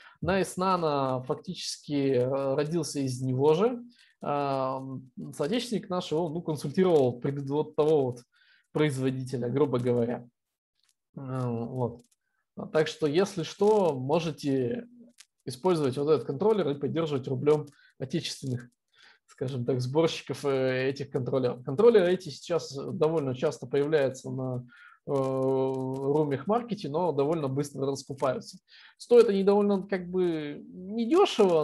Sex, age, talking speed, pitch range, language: male, 20-39, 105 wpm, 135-190 Hz, Russian